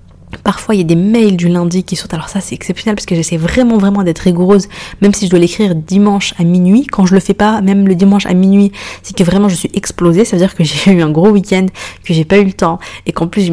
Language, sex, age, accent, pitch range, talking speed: French, female, 20-39, French, 165-195 Hz, 285 wpm